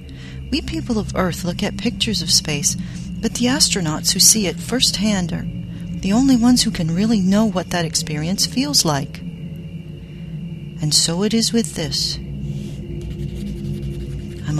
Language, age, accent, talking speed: English, 40-59, American, 150 wpm